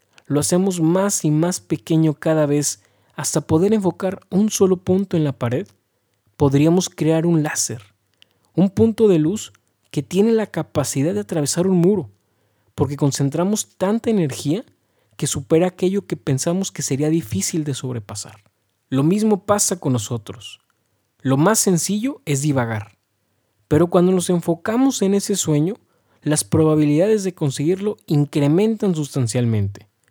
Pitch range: 120-180 Hz